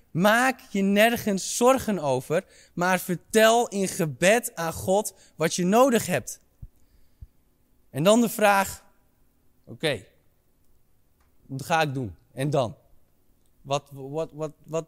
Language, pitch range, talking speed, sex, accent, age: Dutch, 150-210 Hz, 115 wpm, male, Dutch, 20-39